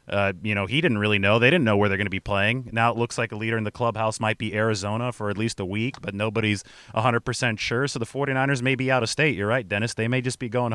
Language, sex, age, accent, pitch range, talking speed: English, male, 30-49, American, 110-140 Hz, 295 wpm